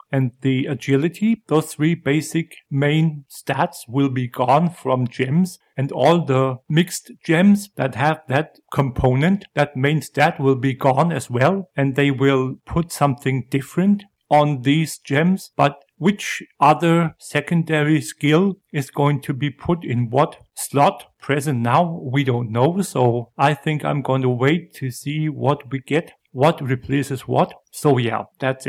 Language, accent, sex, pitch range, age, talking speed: English, German, male, 125-155 Hz, 50-69, 155 wpm